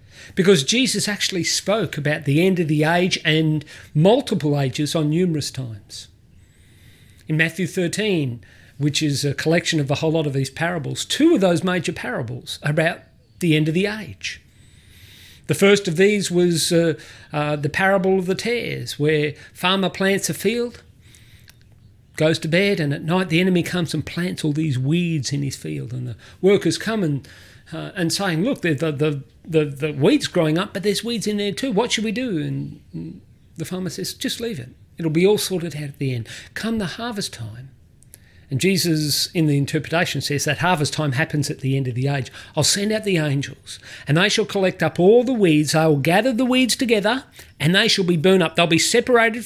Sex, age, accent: male, 50-69, Australian